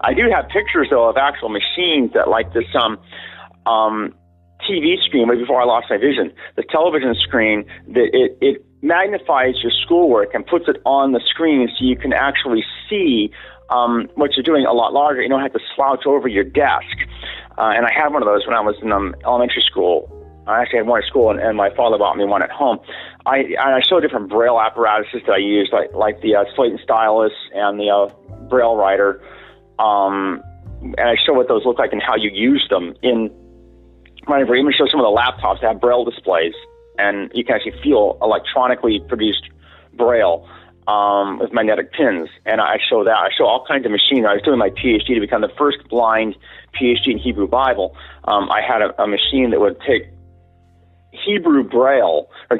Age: 30-49